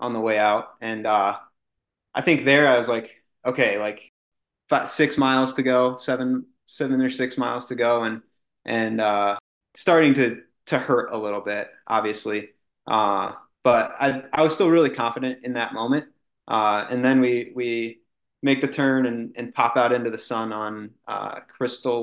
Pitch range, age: 110-130 Hz, 20-39